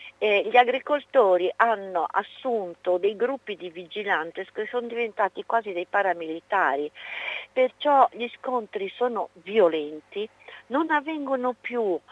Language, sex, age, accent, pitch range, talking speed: Italian, female, 50-69, native, 180-260 Hz, 115 wpm